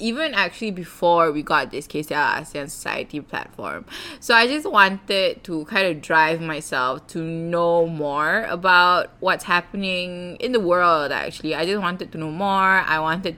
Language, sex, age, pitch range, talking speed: English, female, 20-39, 160-200 Hz, 165 wpm